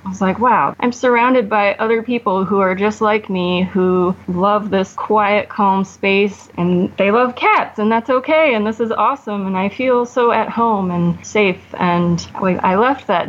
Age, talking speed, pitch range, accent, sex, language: 20-39, 195 wpm, 180-220 Hz, American, female, English